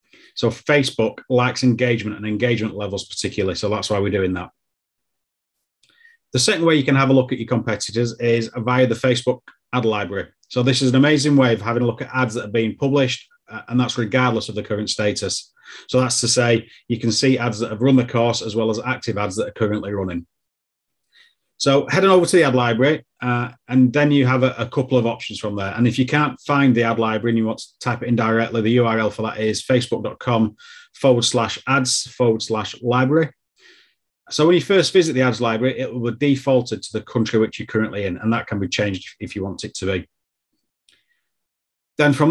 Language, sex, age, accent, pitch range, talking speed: English, male, 30-49, British, 110-130 Hz, 220 wpm